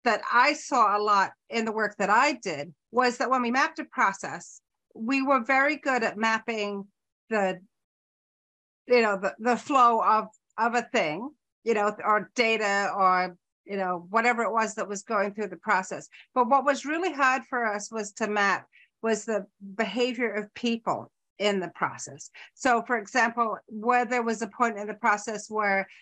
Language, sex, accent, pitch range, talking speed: English, female, American, 200-245 Hz, 185 wpm